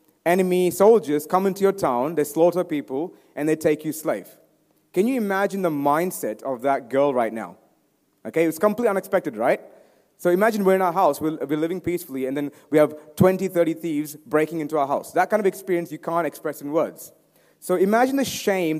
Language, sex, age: Malayalam, male, 30-49